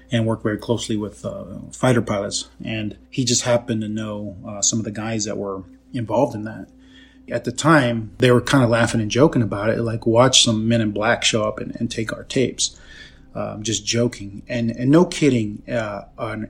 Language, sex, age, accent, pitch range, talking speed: English, male, 20-39, American, 105-125 Hz, 210 wpm